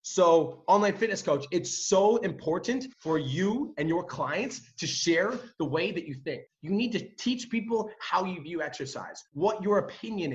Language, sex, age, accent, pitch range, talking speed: English, male, 30-49, American, 160-220 Hz, 180 wpm